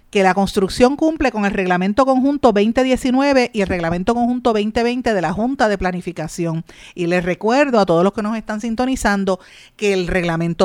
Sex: female